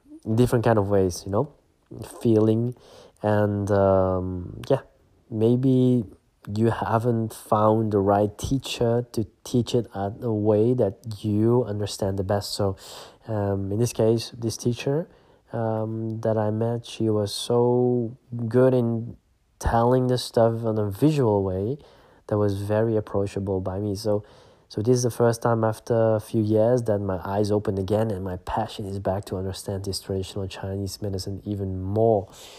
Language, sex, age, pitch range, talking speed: English, male, 20-39, 100-115 Hz, 160 wpm